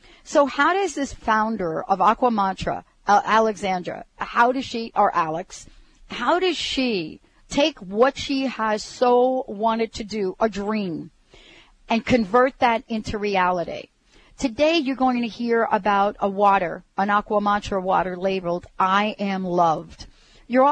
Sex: female